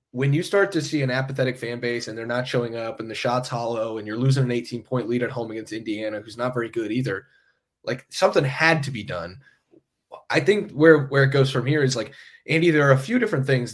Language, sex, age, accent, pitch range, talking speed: English, male, 20-39, American, 115-130 Hz, 250 wpm